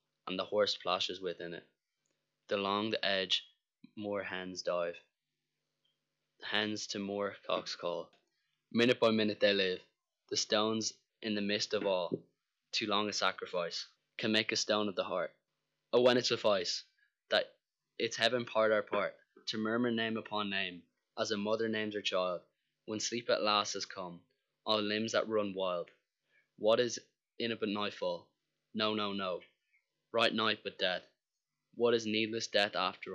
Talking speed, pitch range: 165 wpm, 95-110 Hz